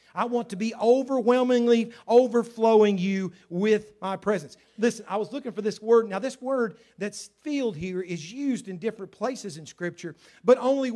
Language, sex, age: English, male, 40-59